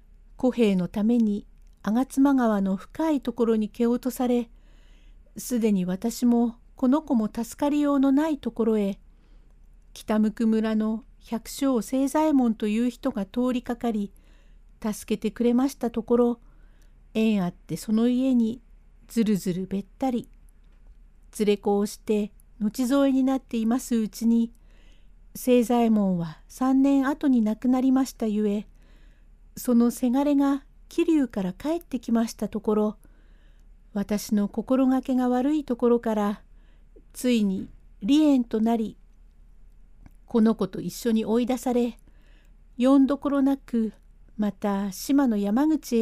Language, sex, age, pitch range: Japanese, female, 50-69, 200-255 Hz